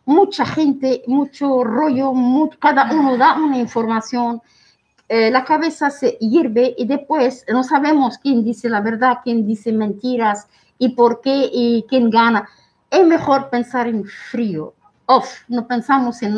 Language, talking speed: Spanish, 145 wpm